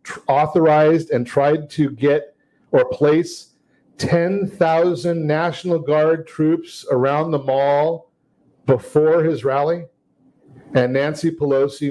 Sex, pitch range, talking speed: male, 145-190 Hz, 100 wpm